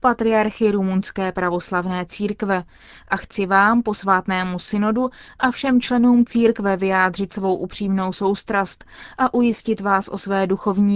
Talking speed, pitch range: 125 wpm, 195-220 Hz